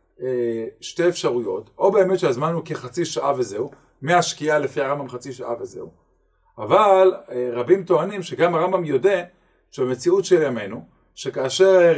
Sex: male